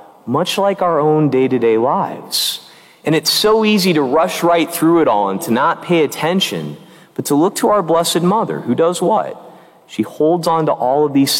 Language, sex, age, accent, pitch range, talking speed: English, male, 40-59, American, 120-165 Hz, 200 wpm